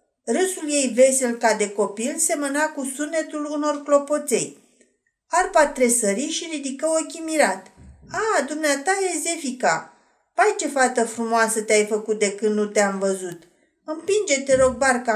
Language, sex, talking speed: Romanian, female, 145 wpm